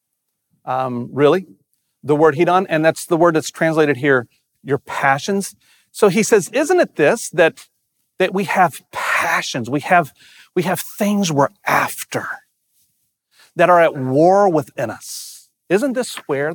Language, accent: English, American